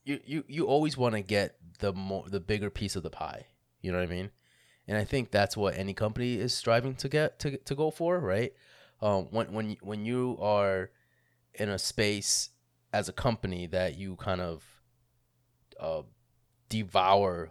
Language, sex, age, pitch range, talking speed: English, male, 20-39, 90-120 Hz, 185 wpm